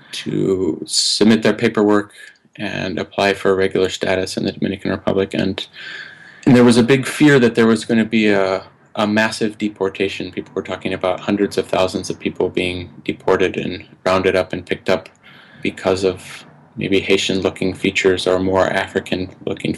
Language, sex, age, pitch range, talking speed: English, male, 30-49, 95-115 Hz, 165 wpm